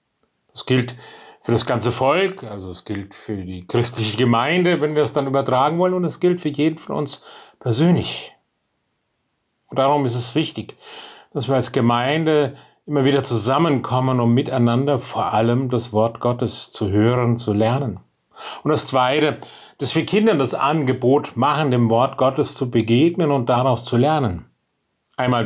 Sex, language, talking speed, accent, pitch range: male, German, 165 wpm, German, 115-145 Hz